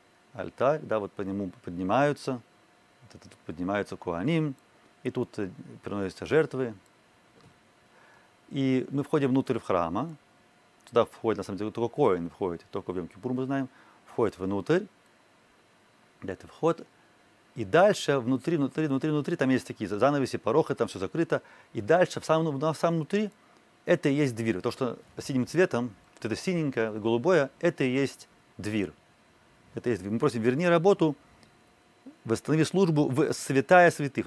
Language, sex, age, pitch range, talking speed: Russian, male, 30-49, 105-145 Hz, 145 wpm